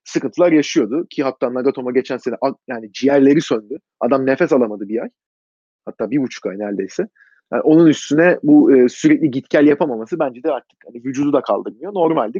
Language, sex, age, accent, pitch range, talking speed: Turkish, male, 30-49, native, 125-170 Hz, 175 wpm